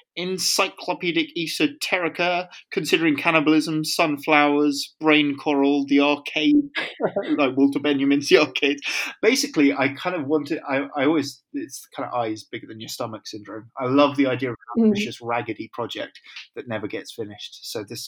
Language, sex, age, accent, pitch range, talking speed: English, male, 20-39, British, 115-155 Hz, 155 wpm